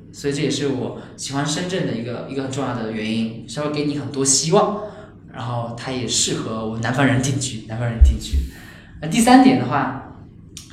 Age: 10-29